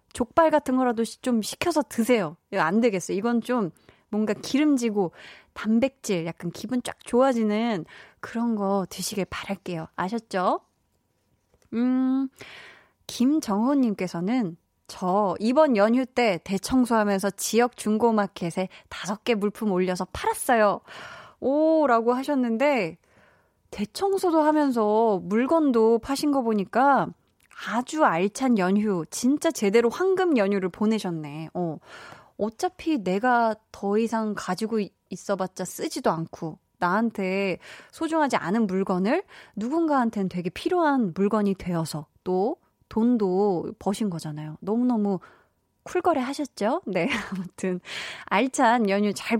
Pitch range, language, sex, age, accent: 190-255 Hz, Korean, female, 20-39, native